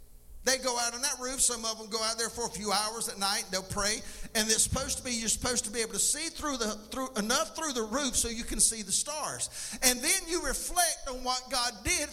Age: 50-69